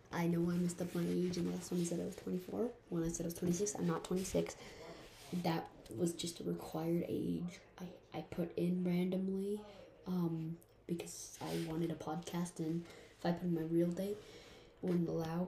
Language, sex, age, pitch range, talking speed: English, female, 20-39, 115-185 Hz, 215 wpm